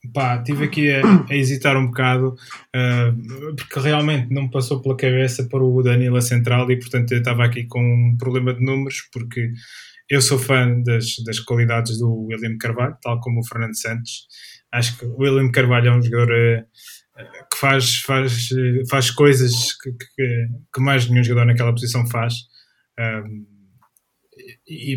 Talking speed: 160 wpm